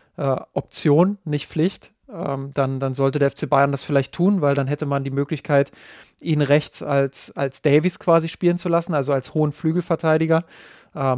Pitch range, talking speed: 135-150 Hz, 165 wpm